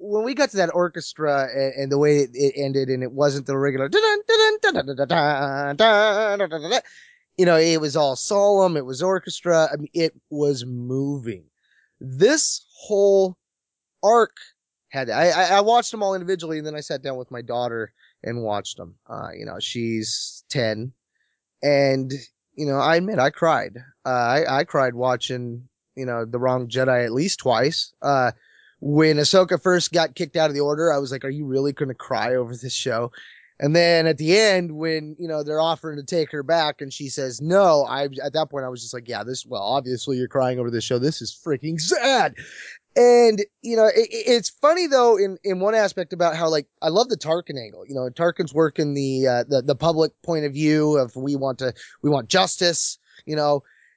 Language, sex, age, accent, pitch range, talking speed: English, male, 20-39, American, 135-185 Hz, 200 wpm